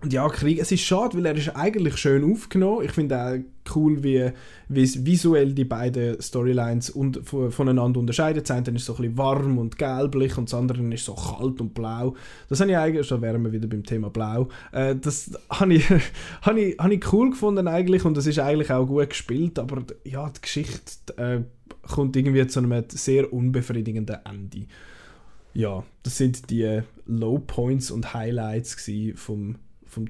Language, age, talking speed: German, 20-39, 185 wpm